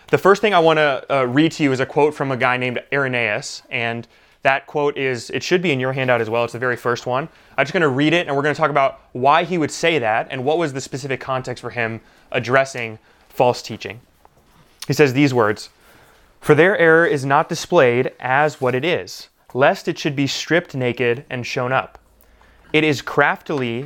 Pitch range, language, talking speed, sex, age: 130-155 Hz, English, 225 wpm, male, 20-39